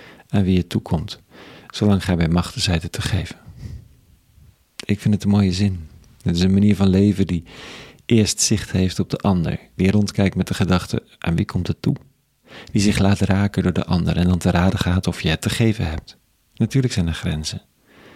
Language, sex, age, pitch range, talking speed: Dutch, male, 50-69, 90-105 Hz, 210 wpm